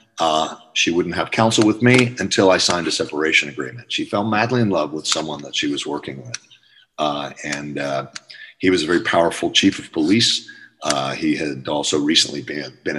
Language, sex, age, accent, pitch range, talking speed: English, male, 40-59, American, 75-110 Hz, 195 wpm